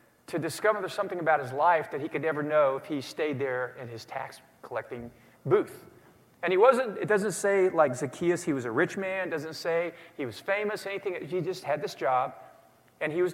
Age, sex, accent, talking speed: 50-69, male, American, 210 wpm